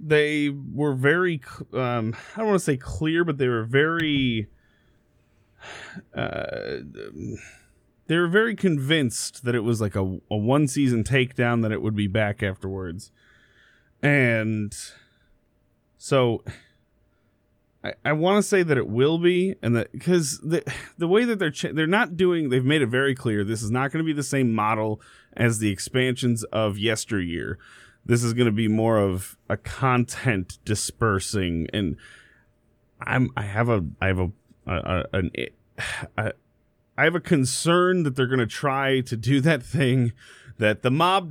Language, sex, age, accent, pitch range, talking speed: English, male, 30-49, American, 105-140 Hz, 160 wpm